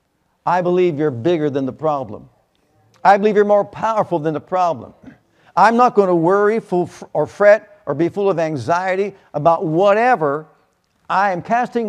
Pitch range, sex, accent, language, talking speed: 145-195 Hz, male, American, English, 160 wpm